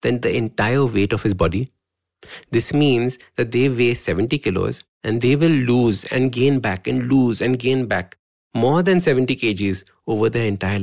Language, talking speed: English, 185 wpm